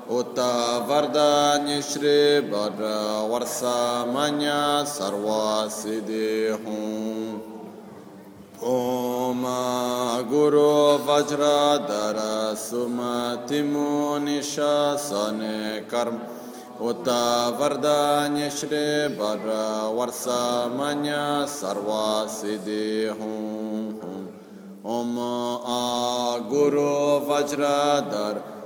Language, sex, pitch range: Italian, male, 110-145 Hz